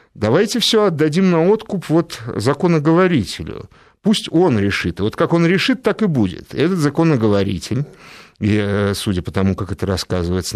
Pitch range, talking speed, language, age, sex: 105-150 Hz, 140 wpm, Russian, 50-69, male